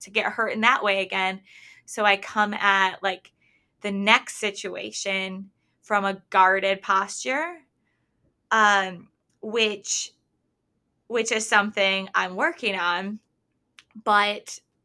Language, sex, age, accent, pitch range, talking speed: English, female, 20-39, American, 200-235 Hz, 115 wpm